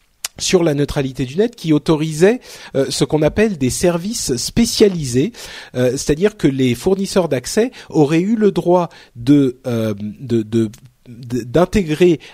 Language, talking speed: French, 125 wpm